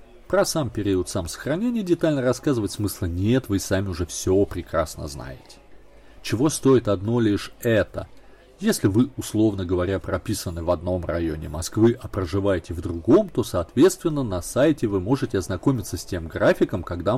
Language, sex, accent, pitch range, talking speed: Russian, male, native, 95-125 Hz, 155 wpm